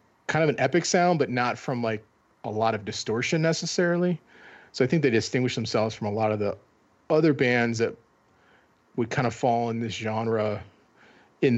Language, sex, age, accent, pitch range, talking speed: English, male, 40-59, American, 110-140 Hz, 185 wpm